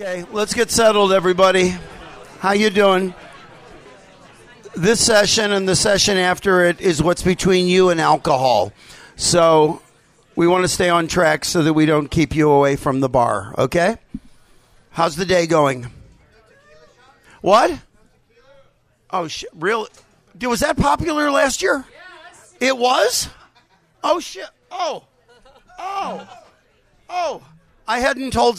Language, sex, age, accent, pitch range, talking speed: English, male, 50-69, American, 180-270 Hz, 130 wpm